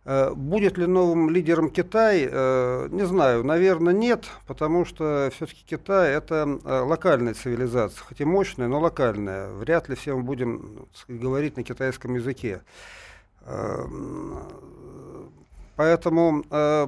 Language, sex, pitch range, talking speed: Russian, male, 125-165 Hz, 115 wpm